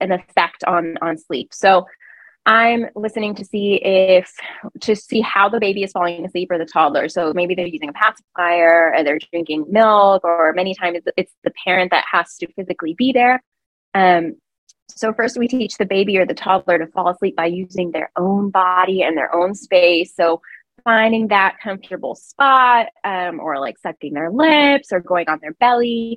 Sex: female